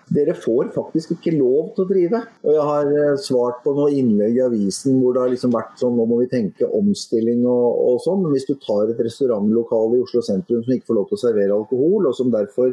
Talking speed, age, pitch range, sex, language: 230 wpm, 30-49, 125-195 Hz, male, English